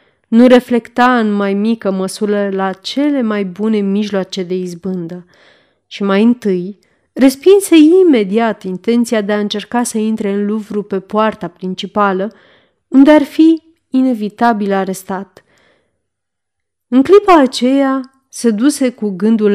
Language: Romanian